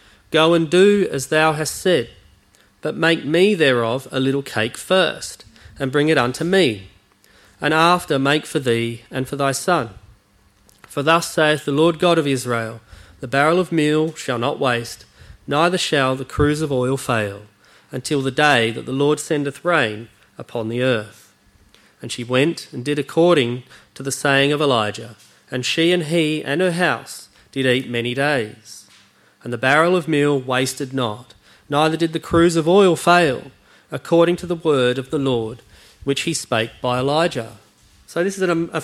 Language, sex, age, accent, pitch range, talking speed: English, male, 40-59, Australian, 120-165 Hz, 180 wpm